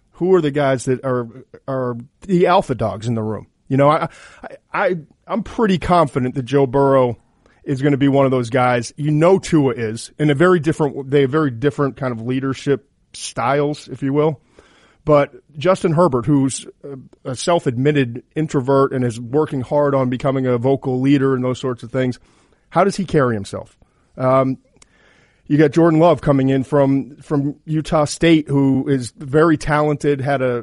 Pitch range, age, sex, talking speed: 130-155 Hz, 40-59, male, 185 wpm